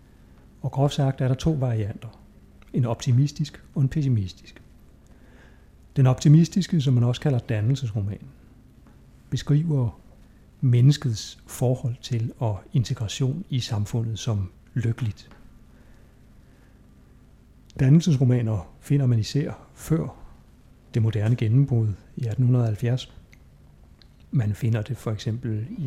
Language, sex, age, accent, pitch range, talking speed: Danish, male, 60-79, native, 110-130 Hz, 105 wpm